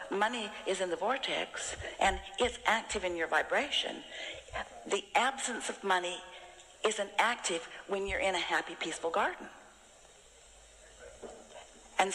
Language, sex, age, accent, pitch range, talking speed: English, female, 60-79, American, 180-240 Hz, 125 wpm